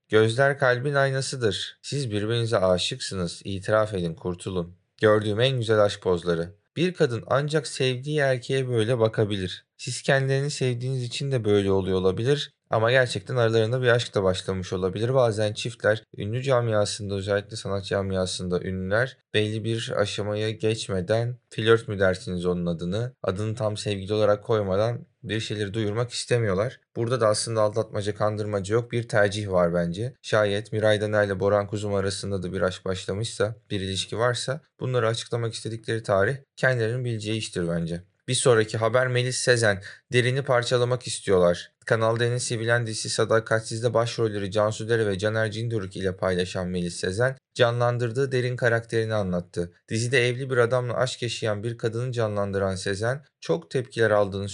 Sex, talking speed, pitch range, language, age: male, 150 wpm, 100-125 Hz, Turkish, 30-49